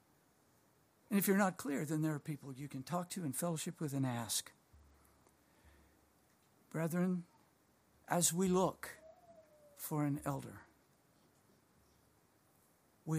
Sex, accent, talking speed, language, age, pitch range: male, American, 120 wpm, English, 60-79, 135-175 Hz